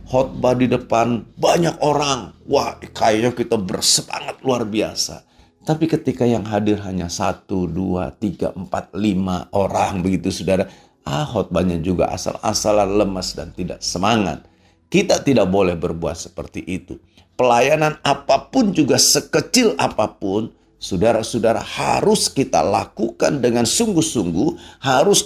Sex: male